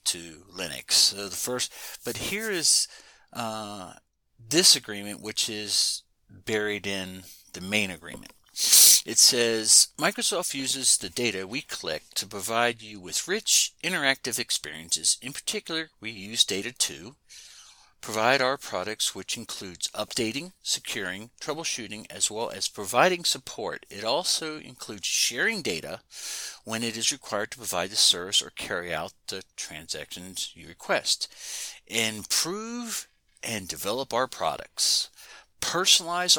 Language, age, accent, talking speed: English, 50-69, American, 130 wpm